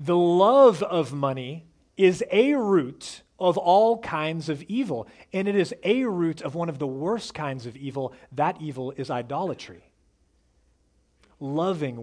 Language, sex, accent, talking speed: English, male, American, 150 wpm